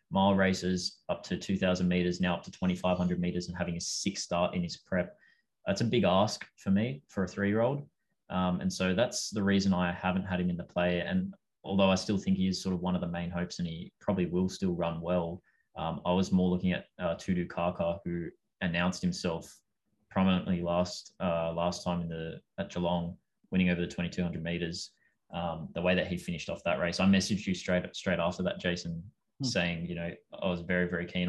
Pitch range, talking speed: 85-95 Hz, 230 wpm